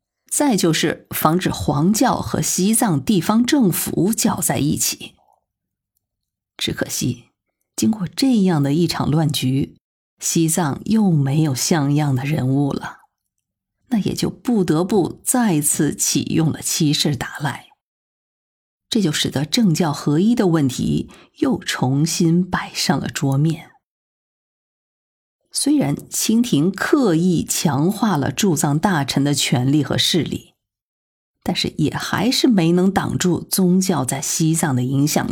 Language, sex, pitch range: Chinese, female, 145-200 Hz